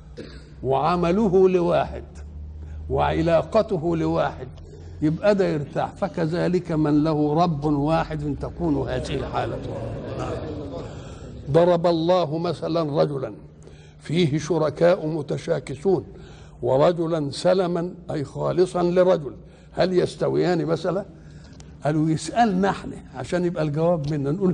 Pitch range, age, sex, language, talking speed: 140-185 Hz, 60-79, male, Arabic, 95 wpm